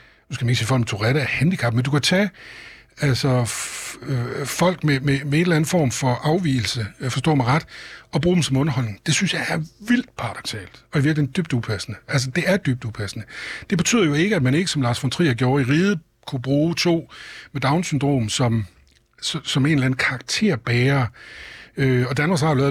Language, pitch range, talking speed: Danish, 120-155 Hz, 215 wpm